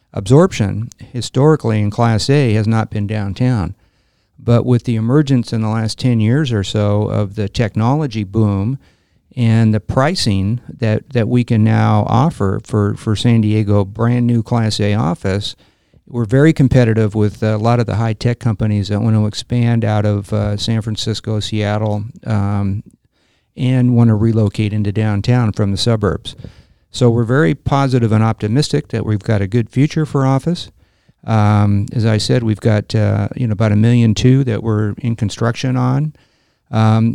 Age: 50-69